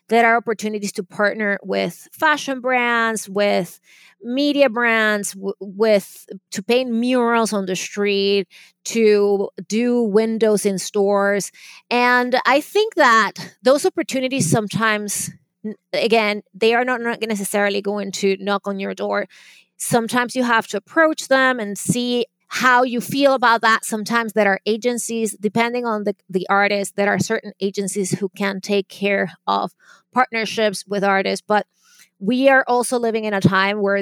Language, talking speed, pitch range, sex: English, 150 wpm, 200-235 Hz, female